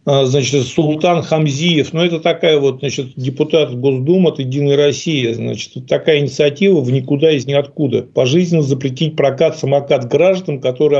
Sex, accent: male, native